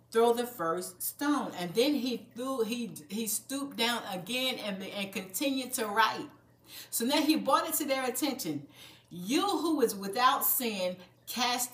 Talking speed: 165 wpm